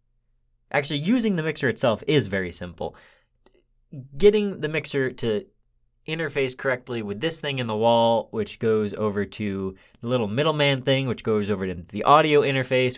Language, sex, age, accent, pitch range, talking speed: English, male, 20-39, American, 100-150 Hz, 160 wpm